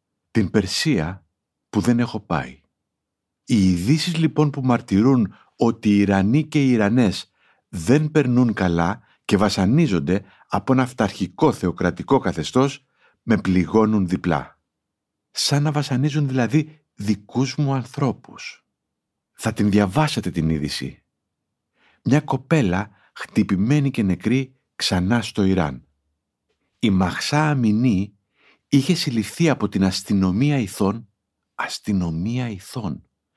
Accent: native